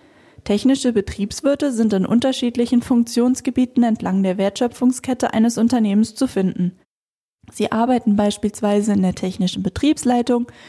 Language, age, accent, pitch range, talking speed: German, 10-29, German, 200-250 Hz, 110 wpm